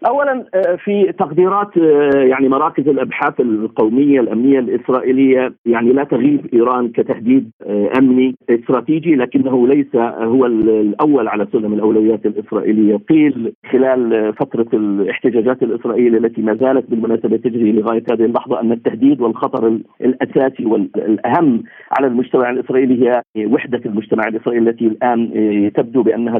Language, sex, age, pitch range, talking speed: Arabic, male, 50-69, 115-140 Hz, 120 wpm